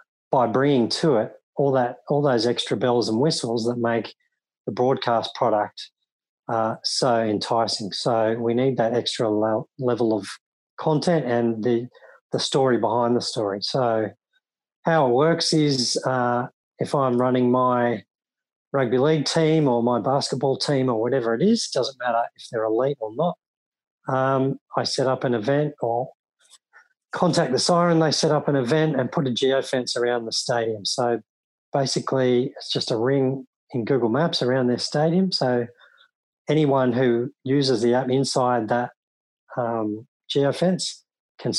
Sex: male